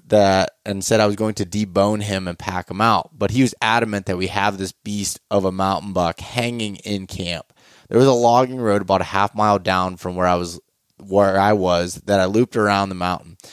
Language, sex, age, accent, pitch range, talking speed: English, male, 20-39, American, 90-105 Hz, 230 wpm